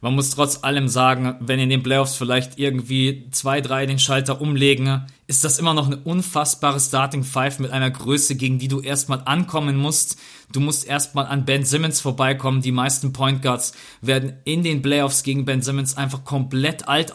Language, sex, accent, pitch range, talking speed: German, male, German, 130-145 Hz, 190 wpm